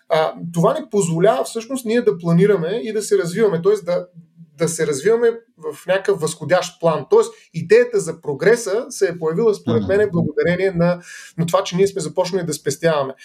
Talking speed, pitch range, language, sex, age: 180 wpm, 165-240 Hz, Bulgarian, male, 30-49